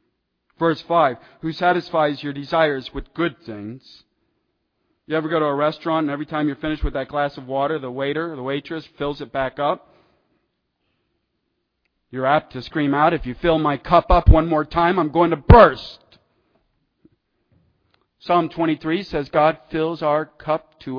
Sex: male